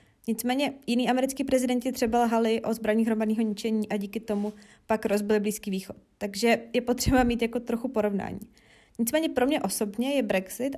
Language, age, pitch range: Czech, 20-39, 215-270 Hz